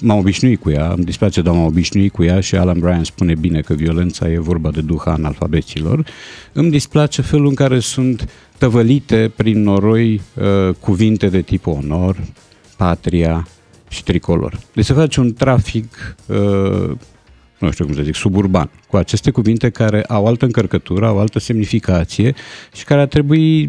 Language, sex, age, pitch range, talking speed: Romanian, male, 50-69, 90-125 Hz, 165 wpm